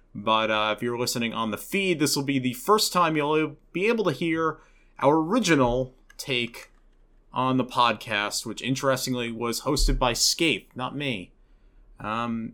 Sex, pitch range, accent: male, 110-145 Hz, American